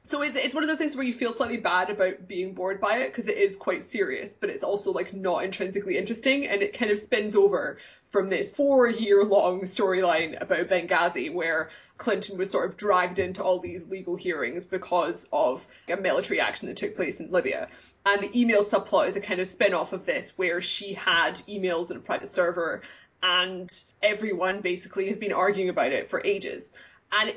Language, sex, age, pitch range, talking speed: English, female, 20-39, 185-235 Hz, 205 wpm